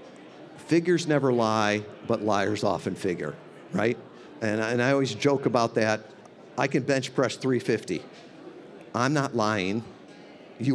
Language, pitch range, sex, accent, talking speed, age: English, 105-140 Hz, male, American, 135 wpm, 50-69